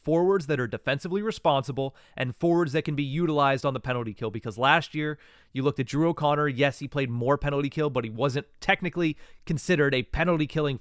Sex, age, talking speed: male, 30-49, 205 wpm